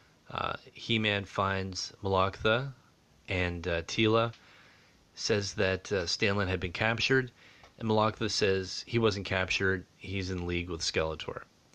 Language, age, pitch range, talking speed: English, 30-49, 85-100 Hz, 130 wpm